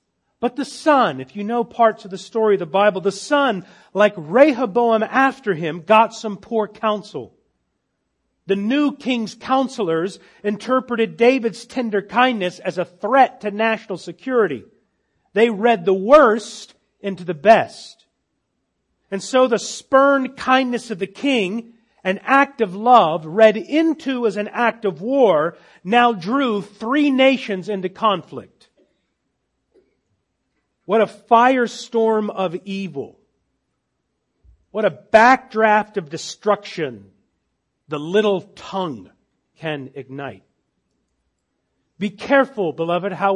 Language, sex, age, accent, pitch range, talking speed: English, male, 40-59, American, 190-245 Hz, 120 wpm